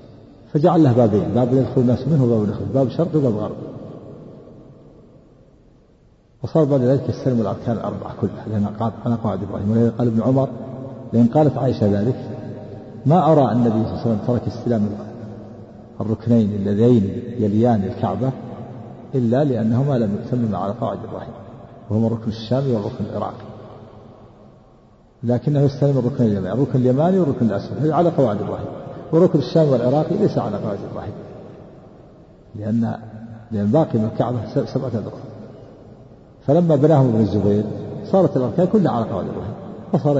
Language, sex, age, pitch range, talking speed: Arabic, male, 50-69, 110-135 Hz, 140 wpm